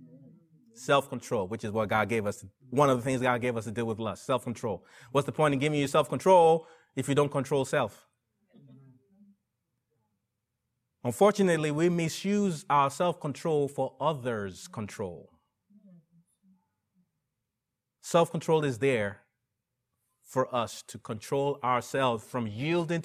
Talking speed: 140 wpm